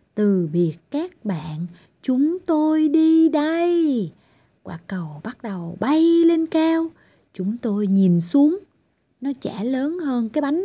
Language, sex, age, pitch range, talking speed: Vietnamese, female, 20-39, 195-315 Hz, 140 wpm